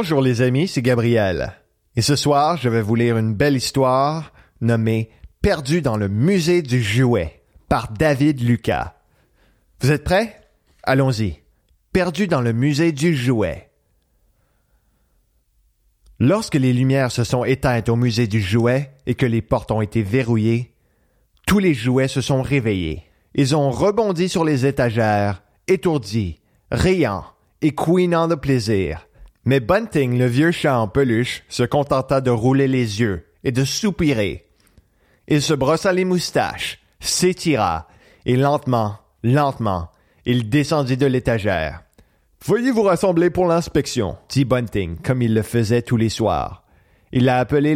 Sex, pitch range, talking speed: male, 115-150 Hz, 150 wpm